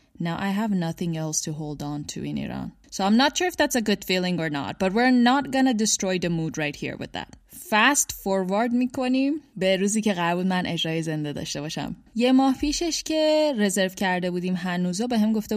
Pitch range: 175-245 Hz